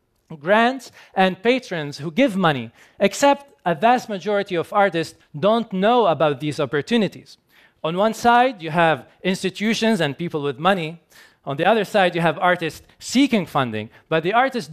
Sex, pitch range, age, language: male, 155-205 Hz, 40-59, Korean